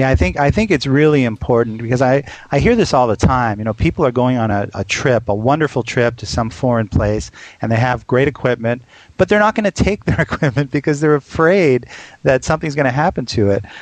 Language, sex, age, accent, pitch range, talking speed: English, male, 40-59, American, 115-140 Hz, 240 wpm